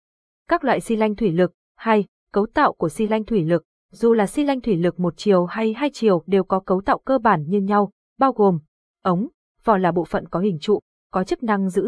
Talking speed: 235 wpm